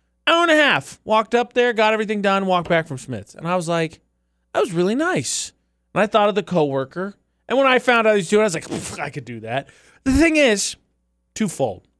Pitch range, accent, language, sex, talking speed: 140-215 Hz, American, English, male, 240 wpm